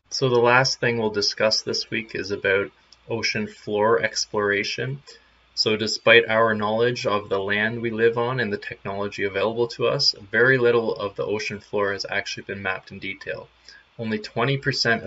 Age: 20-39